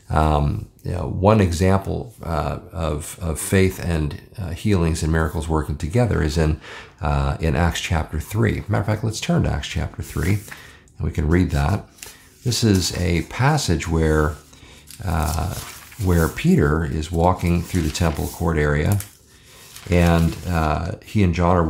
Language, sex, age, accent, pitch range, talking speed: English, male, 50-69, American, 80-100 Hz, 160 wpm